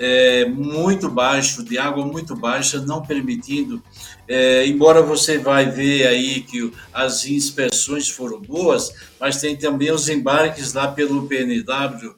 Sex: male